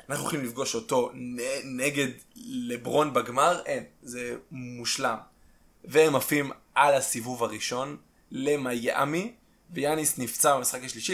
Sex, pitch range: male, 120-155 Hz